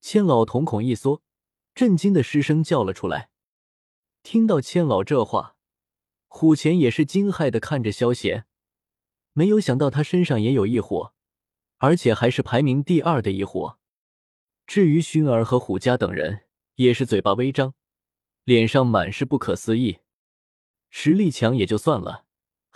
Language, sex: Chinese, male